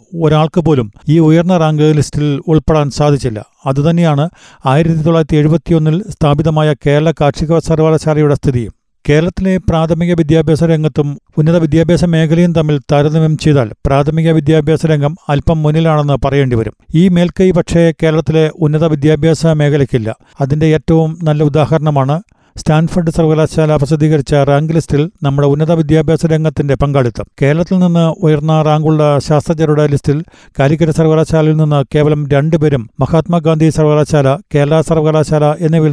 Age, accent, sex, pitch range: 40-59, native, male, 145-160 Hz